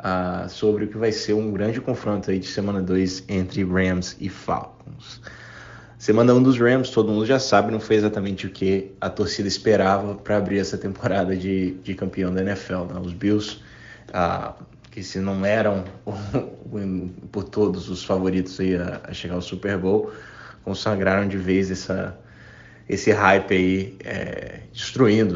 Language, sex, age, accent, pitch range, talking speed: Portuguese, male, 20-39, Brazilian, 95-110 Hz, 155 wpm